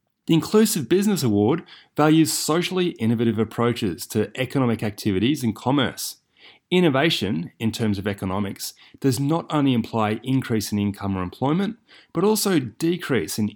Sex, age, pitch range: male, 30-49, 105-150 Hz